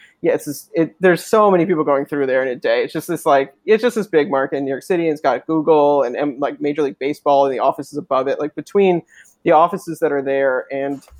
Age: 30-49